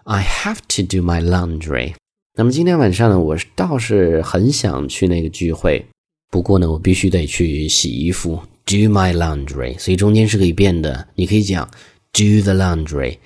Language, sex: Chinese, male